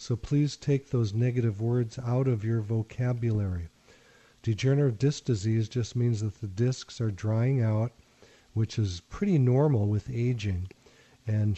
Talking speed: 145 wpm